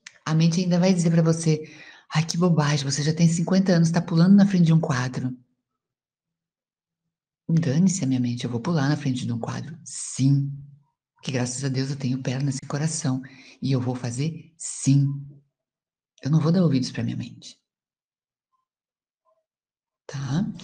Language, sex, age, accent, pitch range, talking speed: Portuguese, female, 60-79, Brazilian, 150-190 Hz, 170 wpm